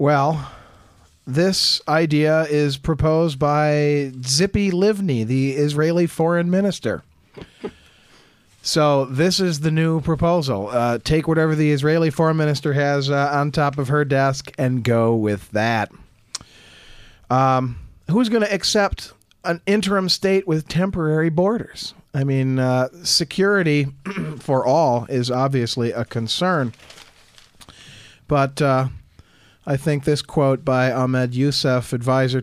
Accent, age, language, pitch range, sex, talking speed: American, 40-59, English, 125-160 Hz, male, 125 wpm